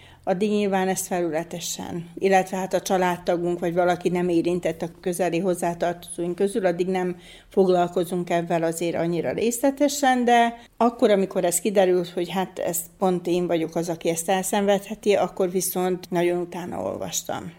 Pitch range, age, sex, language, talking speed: 170-190 Hz, 40-59, female, Hungarian, 145 wpm